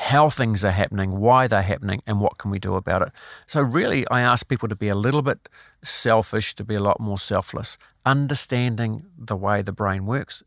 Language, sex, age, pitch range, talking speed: English, male, 50-69, 100-115 Hz, 210 wpm